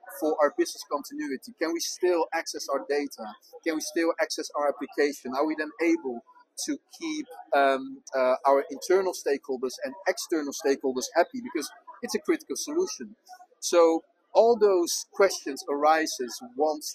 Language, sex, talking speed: English, male, 150 wpm